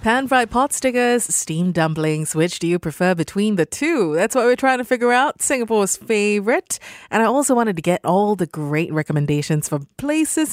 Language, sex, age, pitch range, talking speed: English, female, 30-49, 165-235 Hz, 180 wpm